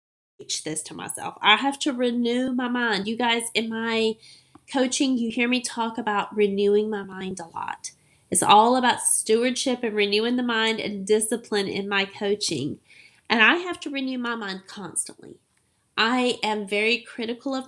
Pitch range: 205-265 Hz